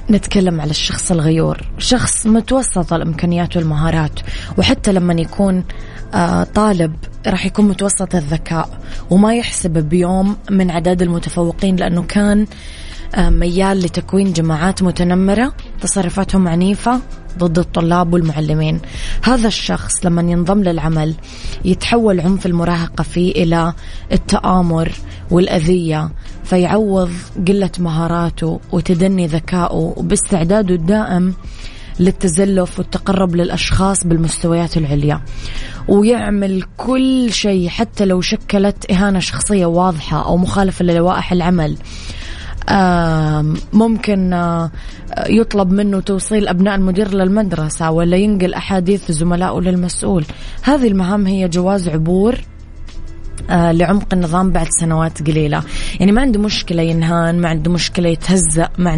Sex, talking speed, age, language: female, 105 wpm, 20-39, Arabic